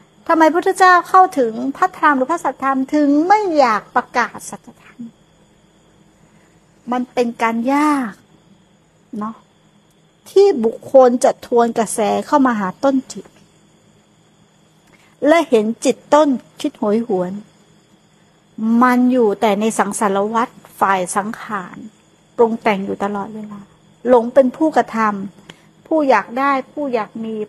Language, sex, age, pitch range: Thai, female, 60-79, 190-255 Hz